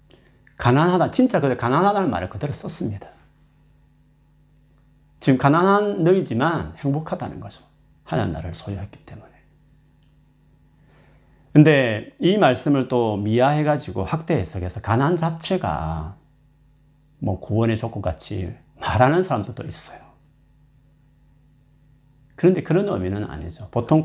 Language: Korean